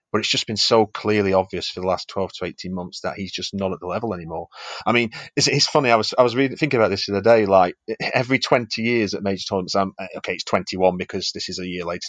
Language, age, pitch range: English, 30-49, 100-110 Hz